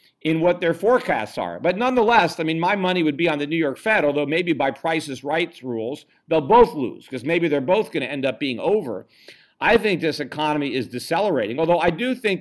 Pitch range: 140-180 Hz